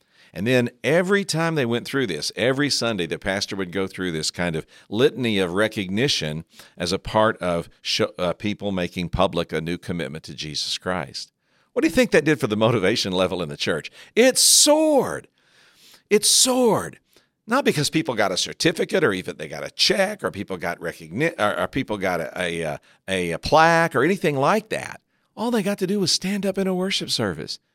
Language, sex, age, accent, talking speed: English, male, 50-69, American, 200 wpm